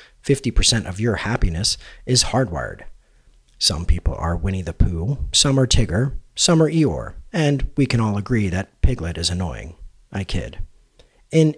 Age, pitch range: 40-59, 90-125 Hz